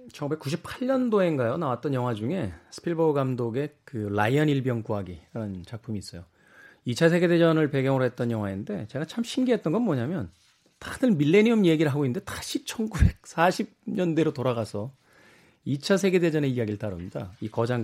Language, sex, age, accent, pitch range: Korean, male, 40-59, native, 120-170 Hz